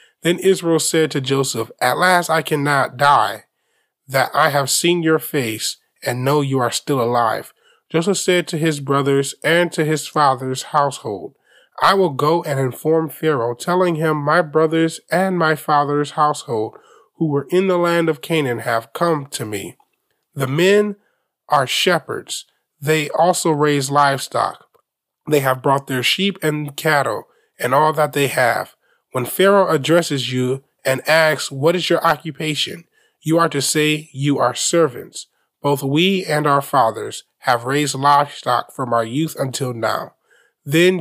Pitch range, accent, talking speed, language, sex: 130-165 Hz, American, 160 wpm, English, male